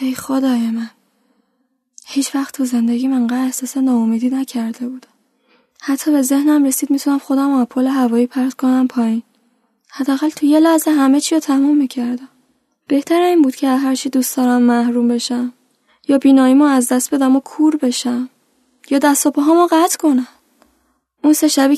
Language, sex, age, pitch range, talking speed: Persian, female, 10-29, 235-280 Hz, 155 wpm